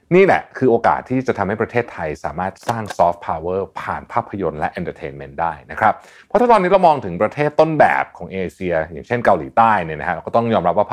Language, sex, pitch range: Thai, male, 95-125 Hz